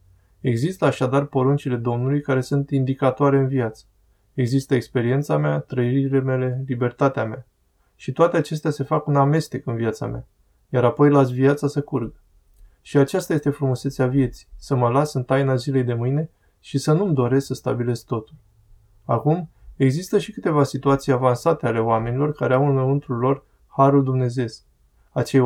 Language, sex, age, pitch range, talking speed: Romanian, male, 20-39, 115-140 Hz, 160 wpm